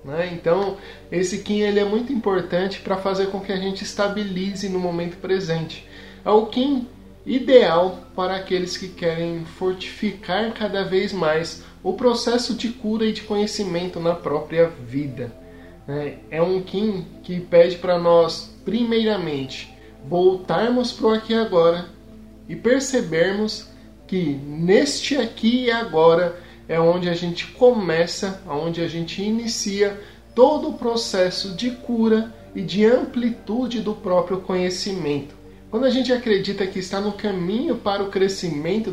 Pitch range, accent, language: 165-215 Hz, Brazilian, Portuguese